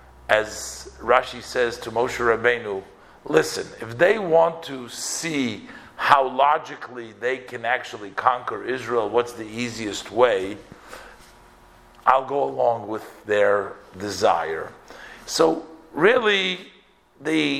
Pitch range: 115-160 Hz